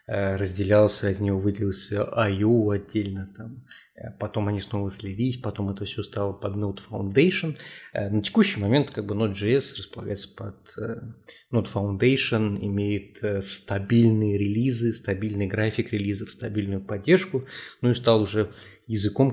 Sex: male